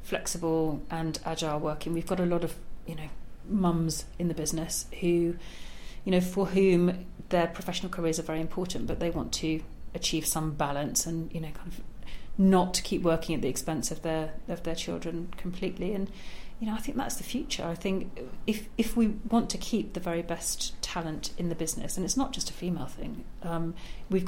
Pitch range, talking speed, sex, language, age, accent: 165-190 Hz, 205 wpm, female, English, 40-59, British